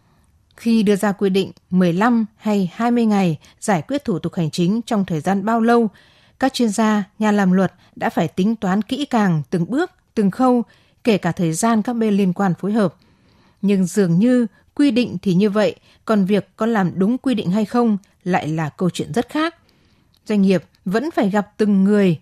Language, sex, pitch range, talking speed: Vietnamese, female, 180-230 Hz, 205 wpm